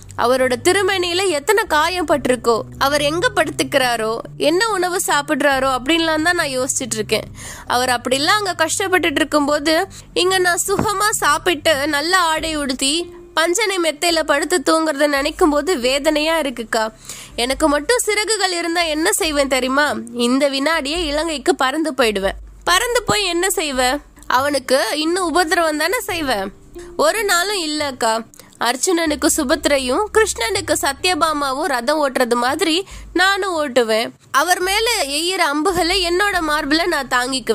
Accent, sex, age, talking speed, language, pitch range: native, female, 20-39, 45 wpm, Tamil, 275-365 Hz